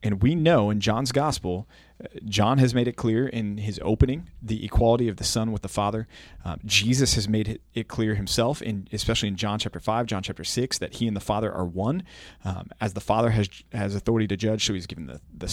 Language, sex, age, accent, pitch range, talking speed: English, male, 30-49, American, 100-120 Hz, 230 wpm